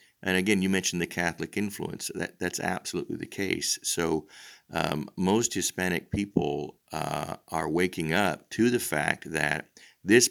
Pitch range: 80-95 Hz